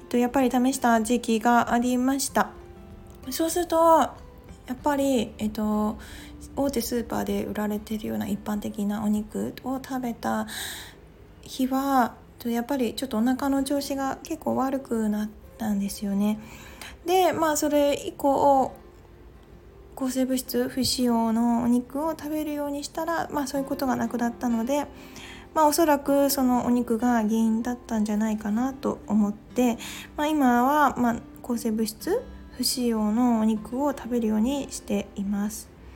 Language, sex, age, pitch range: Japanese, female, 20-39, 220-280 Hz